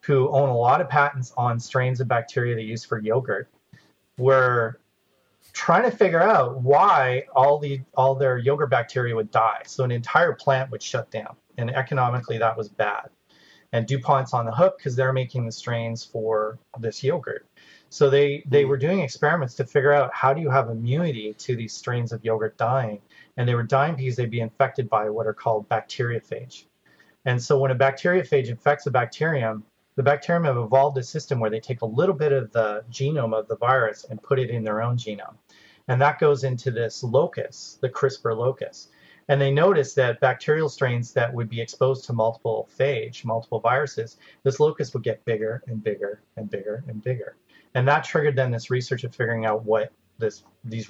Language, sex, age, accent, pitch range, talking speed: English, male, 30-49, American, 115-140 Hz, 195 wpm